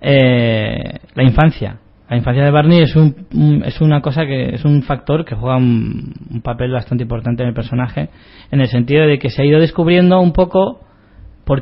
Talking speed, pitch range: 195 wpm, 115-145 Hz